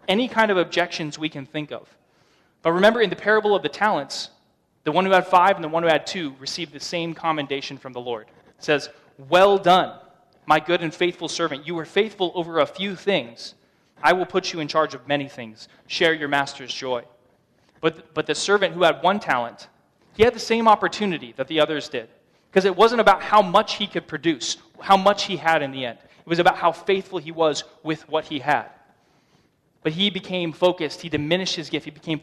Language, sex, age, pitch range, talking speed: English, male, 20-39, 150-180 Hz, 220 wpm